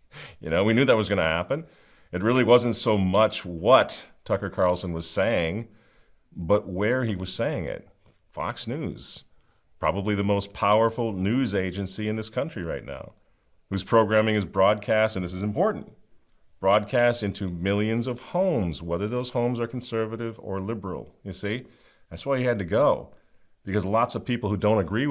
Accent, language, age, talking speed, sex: American, English, 40-59, 175 wpm, male